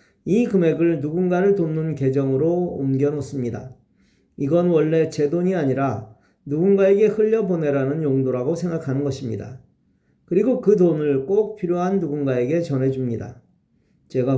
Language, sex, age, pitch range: Korean, male, 40-59, 130-190 Hz